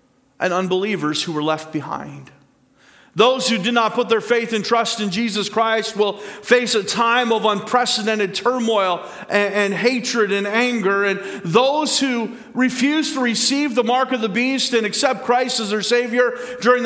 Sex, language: male, English